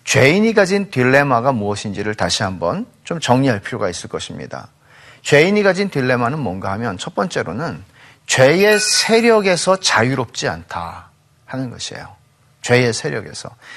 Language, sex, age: Korean, male, 40-59